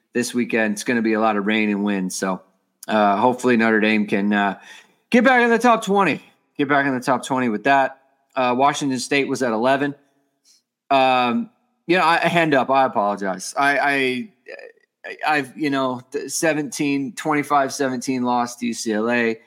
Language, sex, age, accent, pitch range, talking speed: English, male, 20-39, American, 110-145 Hz, 180 wpm